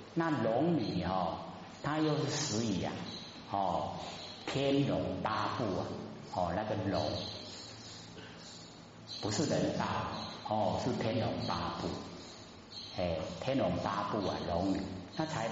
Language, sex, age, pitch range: Chinese, male, 50-69, 90-115 Hz